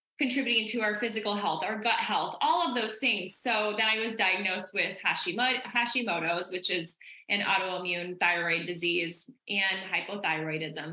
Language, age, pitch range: English, 20-39, 185-225 Hz